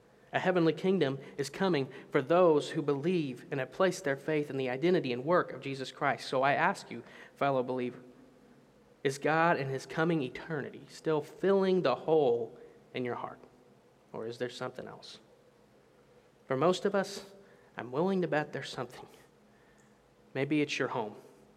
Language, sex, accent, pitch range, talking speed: English, male, American, 130-155 Hz, 165 wpm